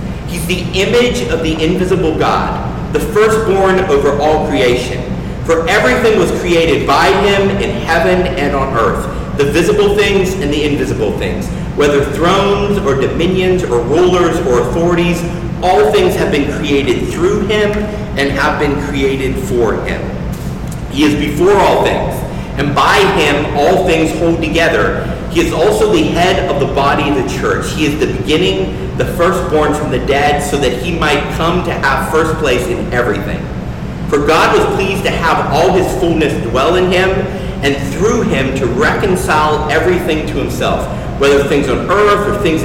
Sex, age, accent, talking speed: male, 40-59, American, 170 wpm